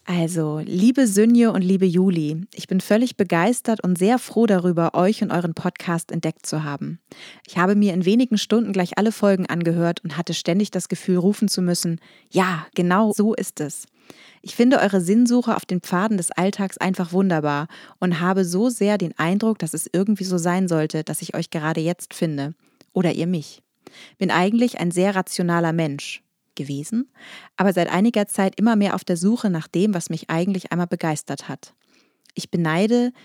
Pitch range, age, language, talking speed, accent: 170-205 Hz, 30-49, German, 185 wpm, German